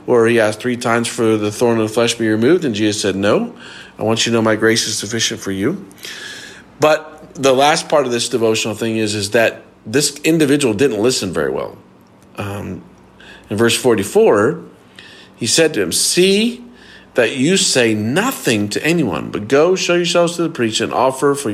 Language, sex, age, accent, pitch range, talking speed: English, male, 50-69, American, 105-130 Hz, 200 wpm